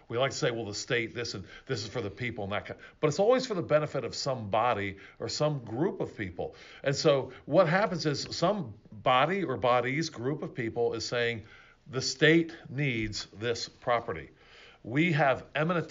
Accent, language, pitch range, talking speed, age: American, English, 115-155 Hz, 205 wpm, 50-69